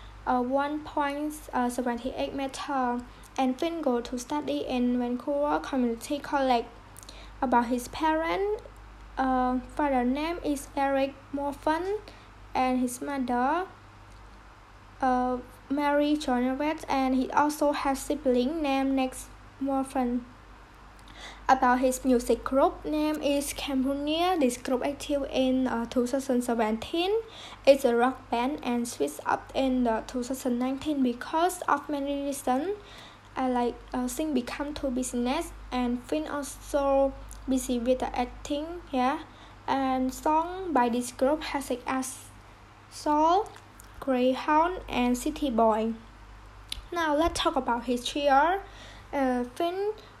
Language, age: English, 10-29